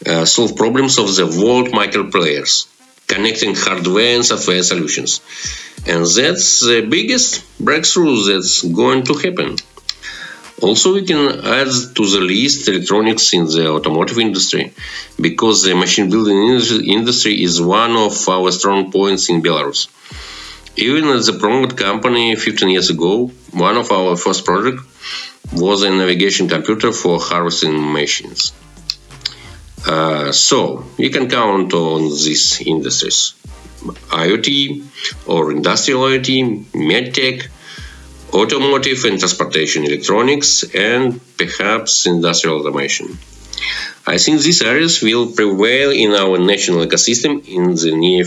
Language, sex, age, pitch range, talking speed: English, male, 50-69, 85-125 Hz, 125 wpm